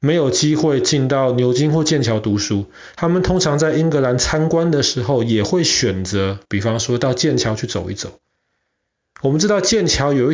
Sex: male